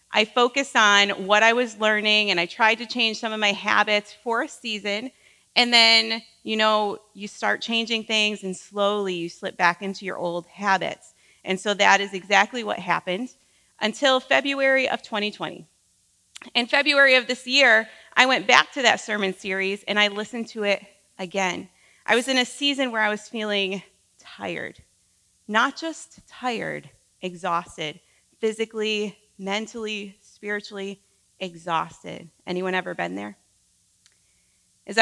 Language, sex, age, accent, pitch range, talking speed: English, female, 30-49, American, 195-240 Hz, 150 wpm